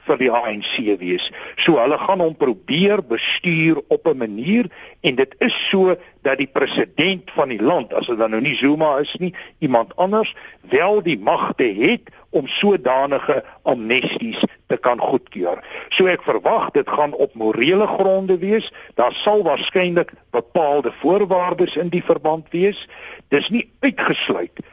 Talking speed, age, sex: 155 wpm, 60-79, male